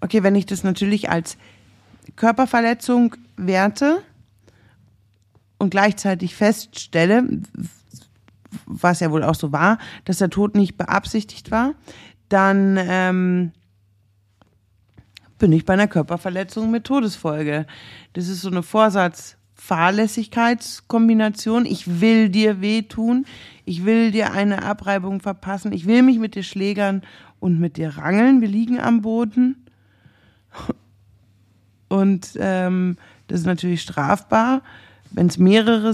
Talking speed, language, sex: 120 wpm, German, female